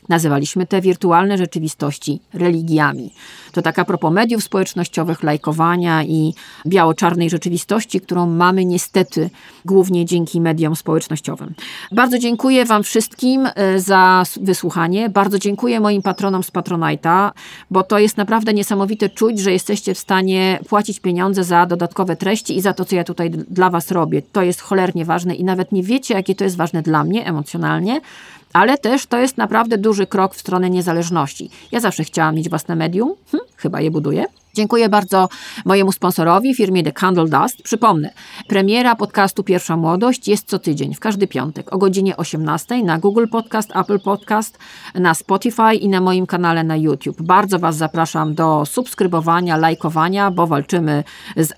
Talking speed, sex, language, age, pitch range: 160 wpm, female, Polish, 40-59, 165-215 Hz